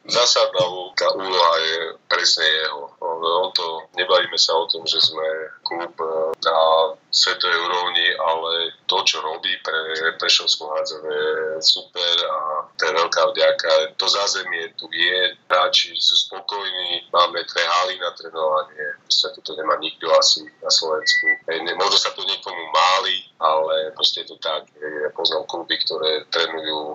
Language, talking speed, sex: Slovak, 145 wpm, male